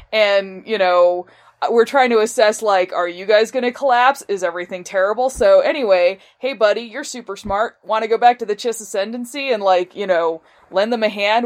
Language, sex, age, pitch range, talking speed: English, female, 20-39, 185-240 Hz, 210 wpm